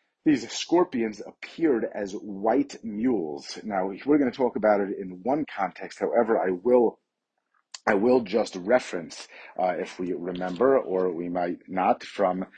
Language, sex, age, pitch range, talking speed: English, male, 30-49, 95-130 Hz, 155 wpm